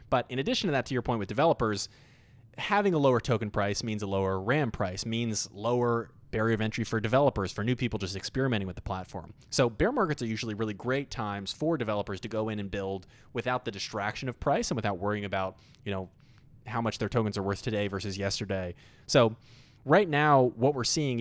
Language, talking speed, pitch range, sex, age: English, 215 wpm, 100-125 Hz, male, 20-39